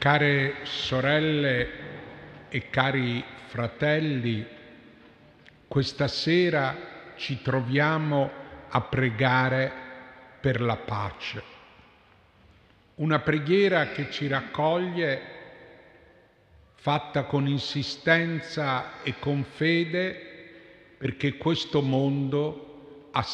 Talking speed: 75 wpm